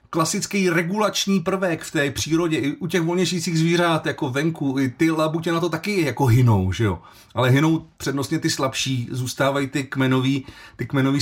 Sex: male